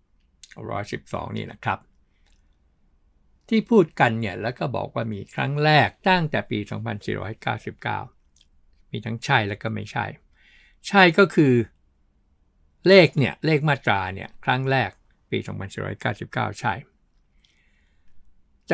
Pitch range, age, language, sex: 90-130 Hz, 60-79, Thai, male